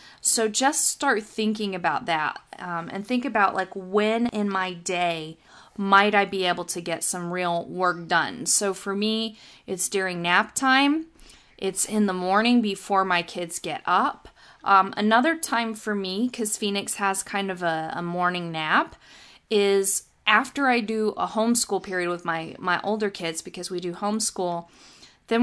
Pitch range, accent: 175-215 Hz, American